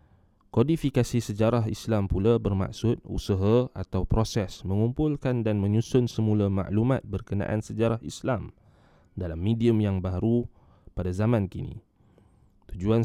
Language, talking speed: Malay, 110 wpm